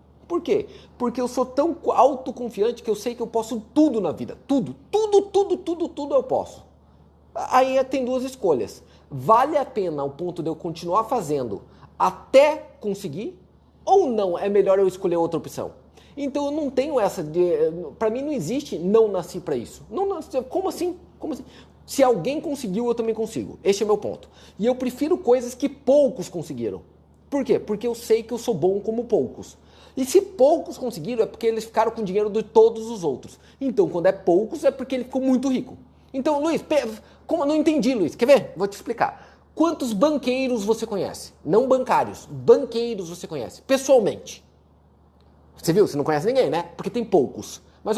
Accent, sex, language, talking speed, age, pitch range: Brazilian, male, Portuguese, 190 wpm, 30-49, 195-280 Hz